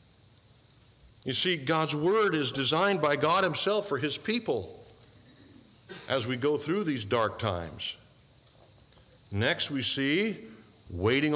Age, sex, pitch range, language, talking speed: 50-69, male, 115-160 Hz, English, 120 wpm